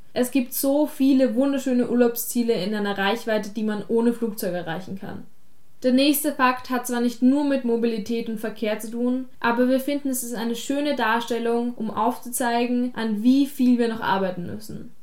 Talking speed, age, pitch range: 180 wpm, 10-29, 225-255 Hz